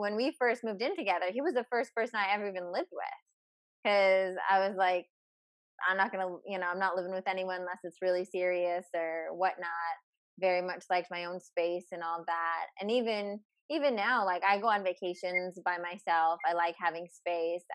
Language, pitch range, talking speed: English, 175-215 Hz, 205 wpm